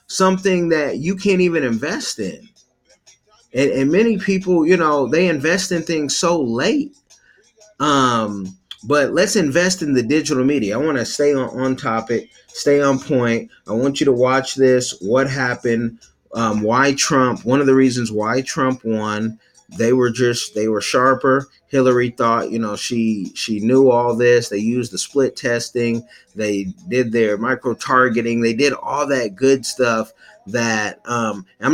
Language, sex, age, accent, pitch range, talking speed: English, male, 30-49, American, 115-145 Hz, 170 wpm